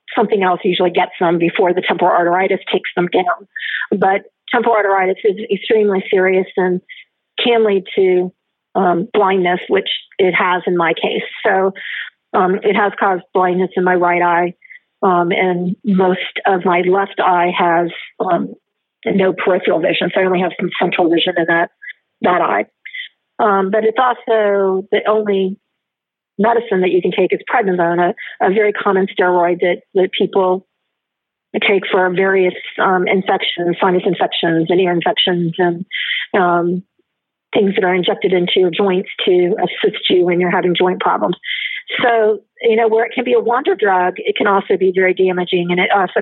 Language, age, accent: English, 50-69, American